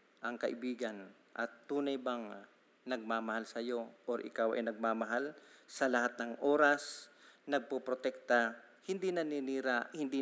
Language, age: Filipino, 40-59